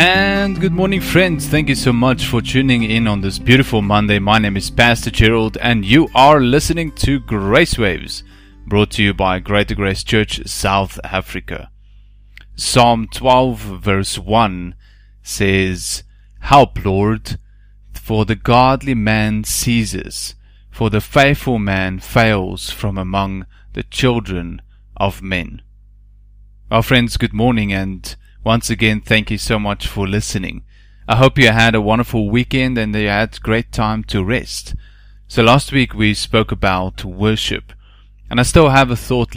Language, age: English, 30-49